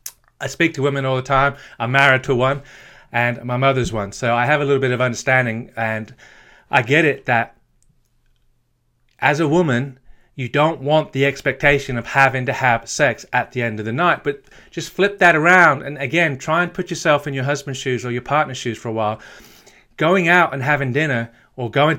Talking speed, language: 205 wpm, English